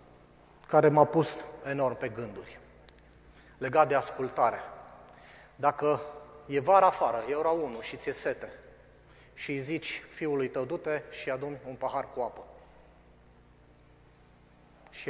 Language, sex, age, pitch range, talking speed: Romanian, male, 30-49, 120-155 Hz, 125 wpm